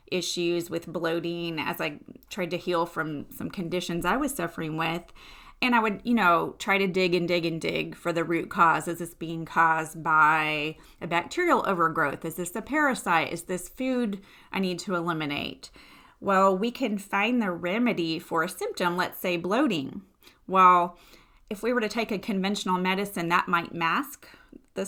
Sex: female